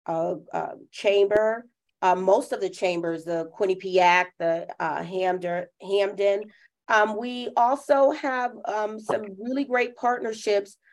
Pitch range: 175-200 Hz